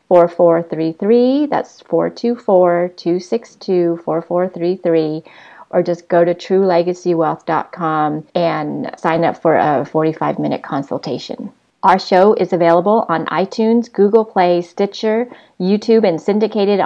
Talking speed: 115 wpm